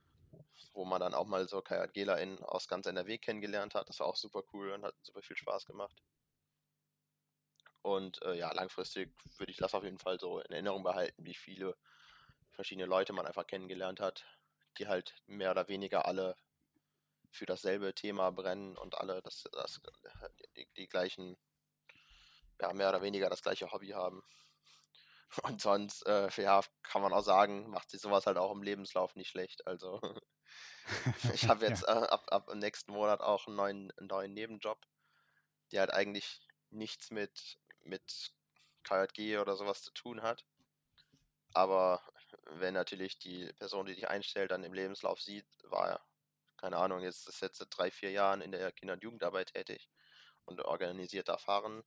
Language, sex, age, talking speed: German, male, 20-39, 165 wpm